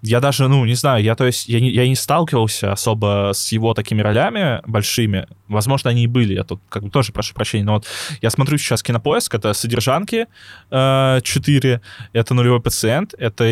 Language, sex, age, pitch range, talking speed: Russian, male, 20-39, 105-135 Hz, 195 wpm